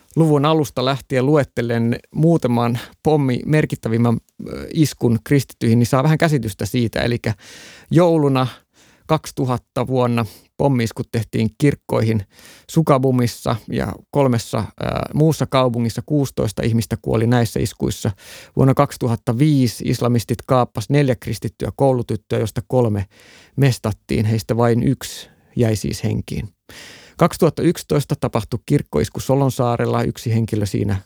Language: Finnish